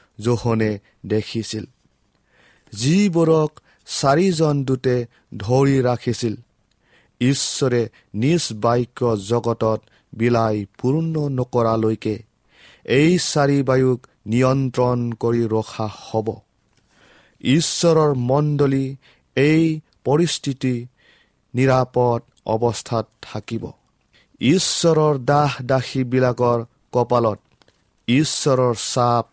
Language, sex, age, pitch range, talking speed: English, male, 40-59, 115-135 Hz, 65 wpm